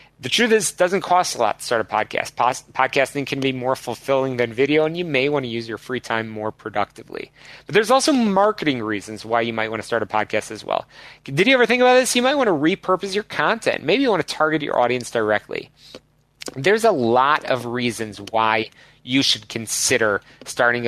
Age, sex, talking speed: 30-49, male, 220 wpm